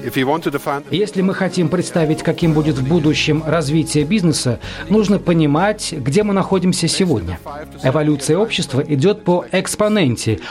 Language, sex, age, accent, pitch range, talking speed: Russian, male, 40-59, native, 145-195 Hz, 120 wpm